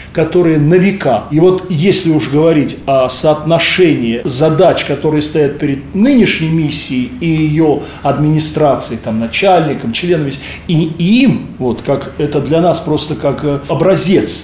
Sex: male